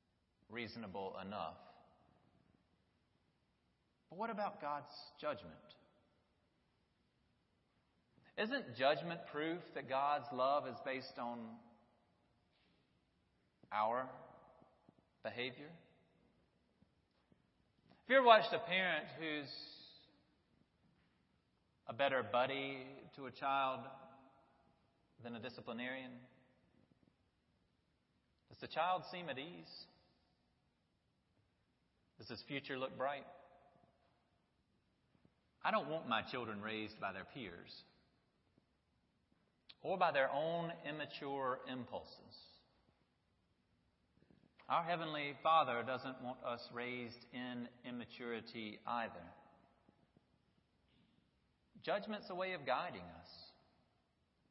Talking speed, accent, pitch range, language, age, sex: 85 wpm, American, 120-165 Hz, English, 40-59, male